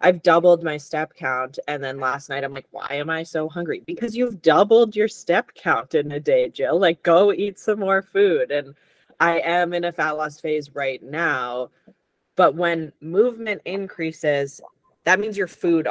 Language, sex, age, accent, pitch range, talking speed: English, female, 20-39, American, 140-175 Hz, 190 wpm